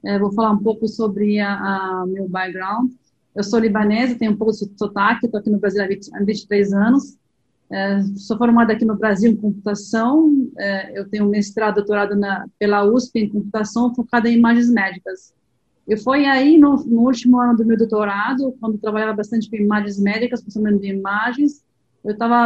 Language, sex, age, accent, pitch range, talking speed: Portuguese, female, 40-59, Brazilian, 210-245 Hz, 180 wpm